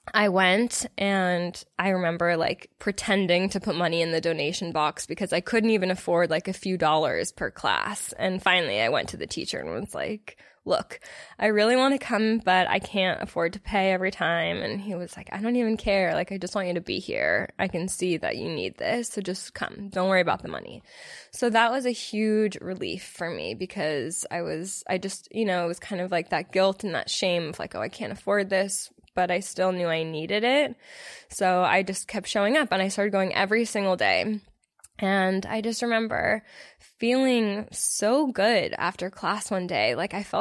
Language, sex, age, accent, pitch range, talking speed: English, female, 10-29, American, 185-220 Hz, 215 wpm